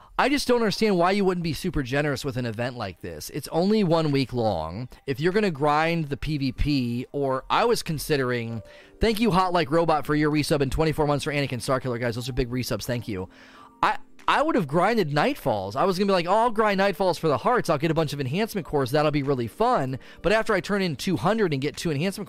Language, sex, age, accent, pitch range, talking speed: English, male, 30-49, American, 135-195 Hz, 240 wpm